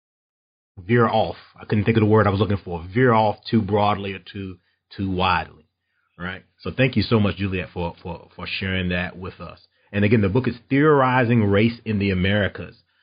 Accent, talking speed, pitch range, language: American, 205 wpm, 95-115 Hz, English